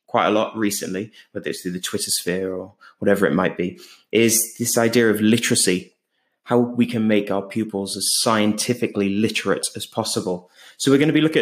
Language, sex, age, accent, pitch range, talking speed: English, male, 20-39, British, 105-130 Hz, 195 wpm